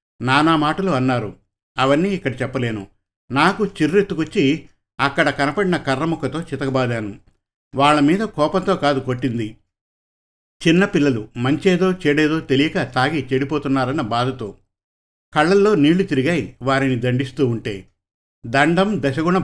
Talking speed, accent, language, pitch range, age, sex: 95 wpm, native, Telugu, 125-155 Hz, 50-69, male